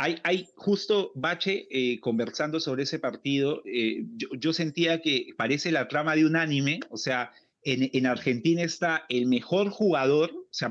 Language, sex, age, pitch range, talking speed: Spanish, male, 30-49, 135-185 Hz, 170 wpm